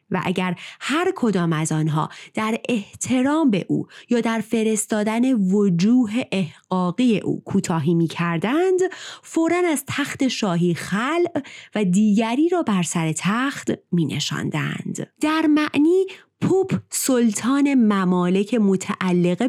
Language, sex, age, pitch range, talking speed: Persian, female, 30-49, 180-275 Hz, 115 wpm